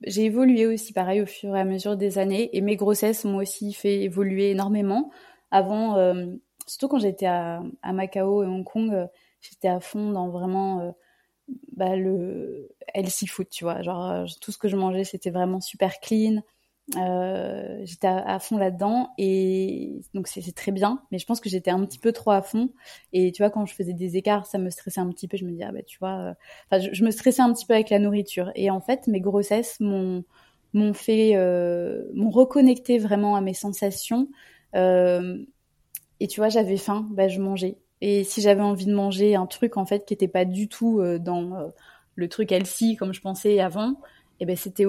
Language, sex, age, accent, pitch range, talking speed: French, female, 20-39, French, 185-215 Hz, 215 wpm